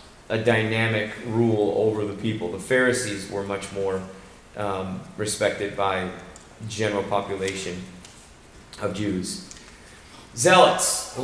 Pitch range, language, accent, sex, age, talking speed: 105-130 Hz, English, American, male, 30-49, 110 wpm